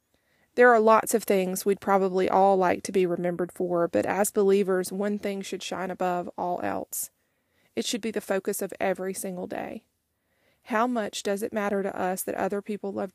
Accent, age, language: American, 20-39, English